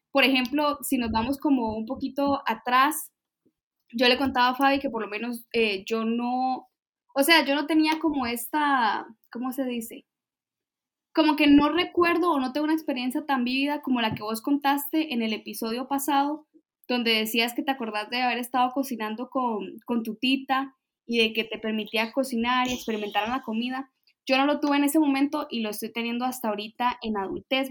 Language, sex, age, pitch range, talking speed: Spanish, female, 10-29, 230-280 Hz, 190 wpm